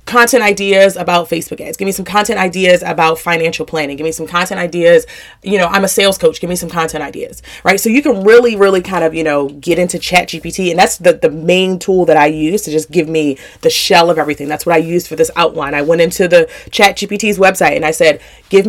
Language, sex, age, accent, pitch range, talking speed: English, female, 30-49, American, 160-205 Hz, 250 wpm